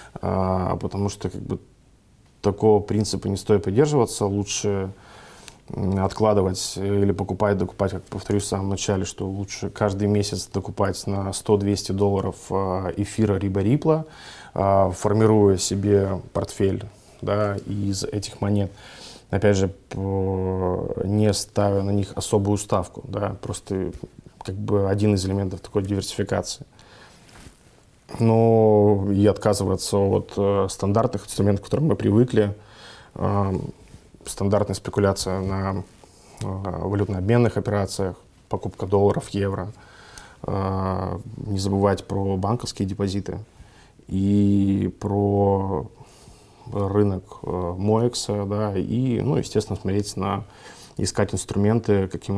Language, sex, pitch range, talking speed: Russian, male, 95-105 Hz, 100 wpm